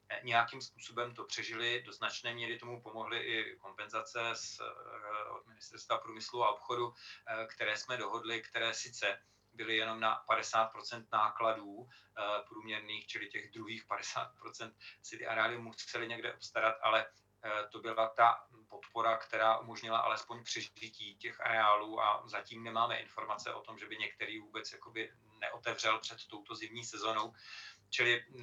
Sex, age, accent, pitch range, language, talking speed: male, 40-59, native, 110-120 Hz, Czech, 145 wpm